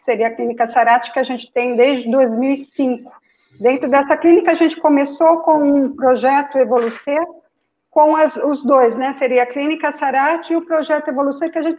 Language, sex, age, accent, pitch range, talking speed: Portuguese, female, 50-69, Brazilian, 255-325 Hz, 185 wpm